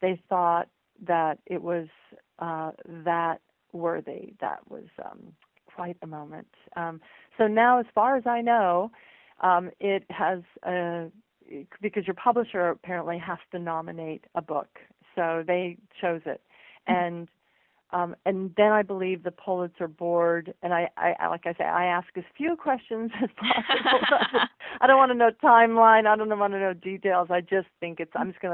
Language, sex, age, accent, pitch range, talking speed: English, female, 40-59, American, 165-190 Hz, 170 wpm